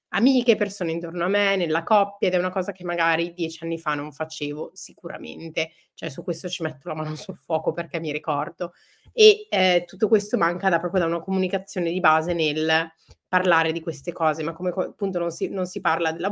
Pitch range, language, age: 165-205 Hz, Italian, 30-49